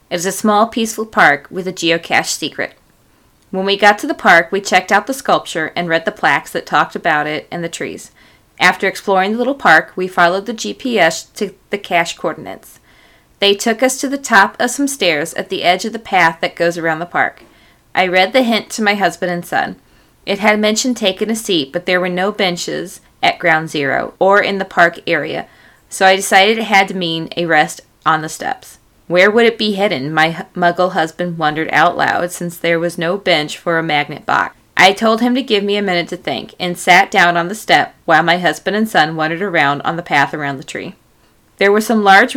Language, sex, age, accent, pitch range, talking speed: English, female, 30-49, American, 170-210 Hz, 225 wpm